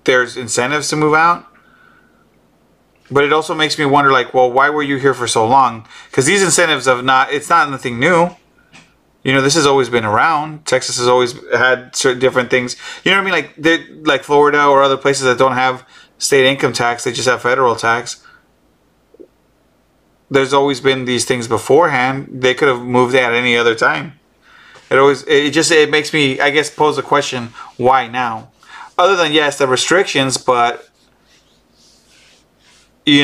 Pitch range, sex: 120-145 Hz, male